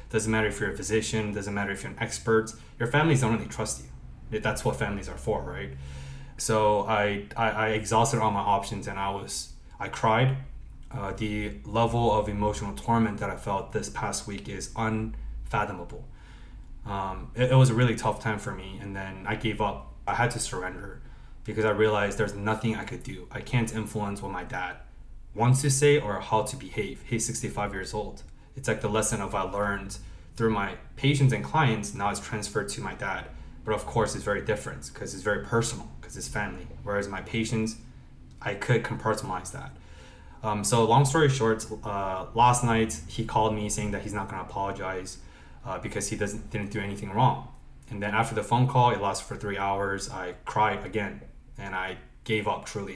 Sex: male